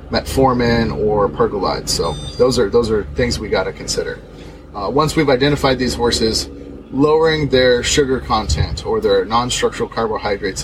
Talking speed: 150 wpm